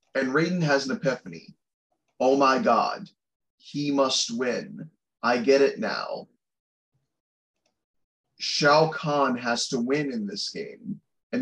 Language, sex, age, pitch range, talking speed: English, male, 20-39, 135-195 Hz, 125 wpm